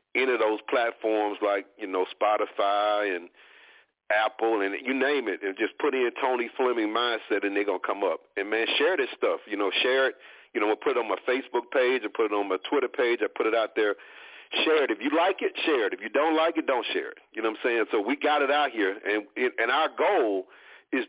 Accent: American